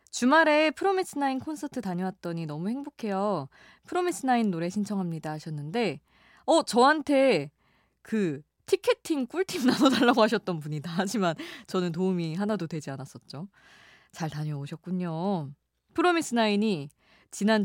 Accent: native